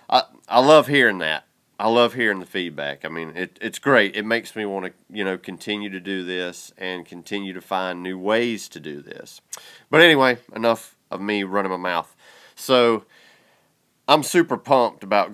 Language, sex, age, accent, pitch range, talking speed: English, male, 30-49, American, 95-125 Hz, 190 wpm